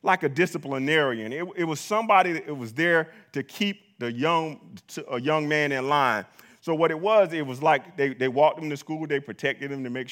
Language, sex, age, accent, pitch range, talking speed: English, male, 30-49, American, 140-185 Hz, 225 wpm